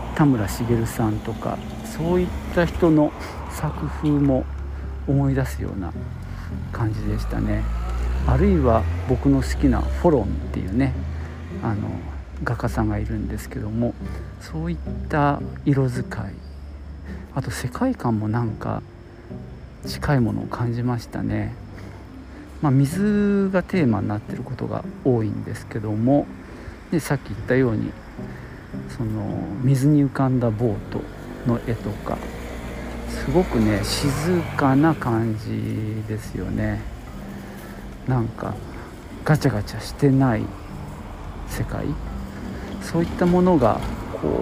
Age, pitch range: 50-69, 80-130 Hz